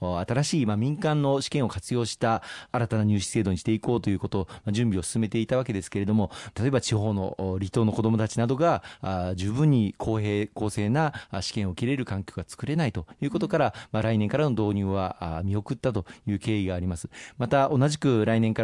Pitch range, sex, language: 105-130 Hz, male, Japanese